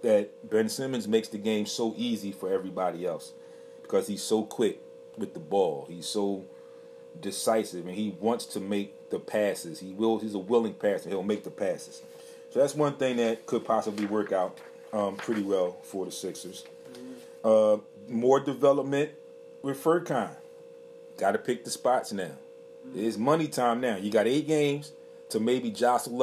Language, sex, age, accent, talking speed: English, male, 30-49, American, 170 wpm